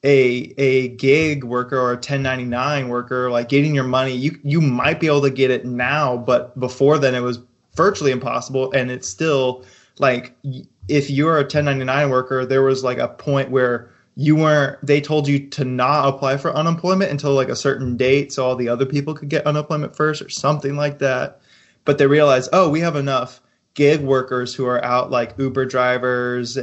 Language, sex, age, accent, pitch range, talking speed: English, male, 20-39, American, 125-145 Hz, 195 wpm